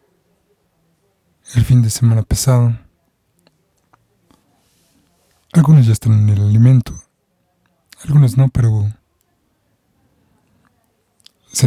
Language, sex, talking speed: Spanish, male, 75 wpm